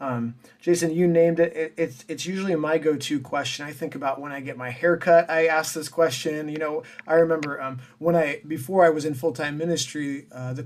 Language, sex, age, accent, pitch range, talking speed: English, male, 30-49, American, 135-170 Hz, 225 wpm